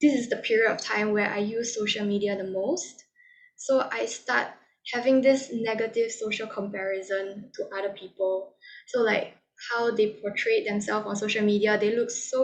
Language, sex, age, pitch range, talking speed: English, female, 10-29, 210-260 Hz, 175 wpm